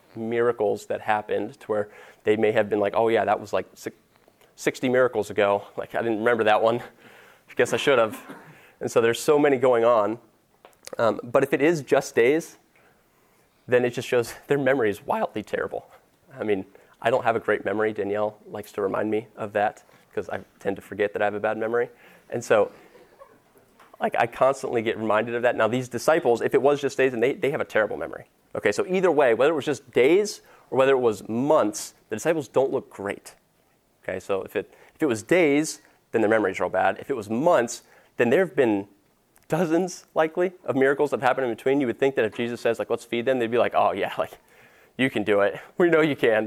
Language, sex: English, male